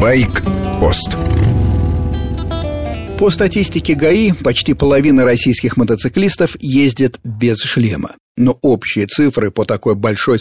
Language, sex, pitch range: Russian, male, 105-140 Hz